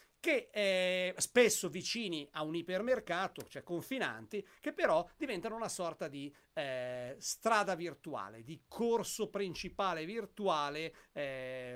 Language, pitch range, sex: Italian, 140-215 Hz, male